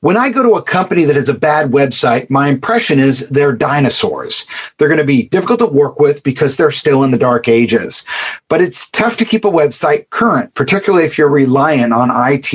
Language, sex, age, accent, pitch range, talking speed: English, male, 40-59, American, 130-165 Hz, 210 wpm